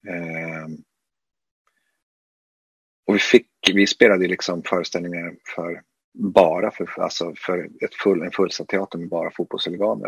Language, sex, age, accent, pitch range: Swedish, male, 30-49, native, 85-105 Hz